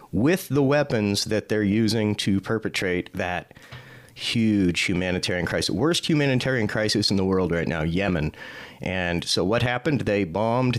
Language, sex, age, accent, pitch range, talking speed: English, male, 30-49, American, 90-110 Hz, 150 wpm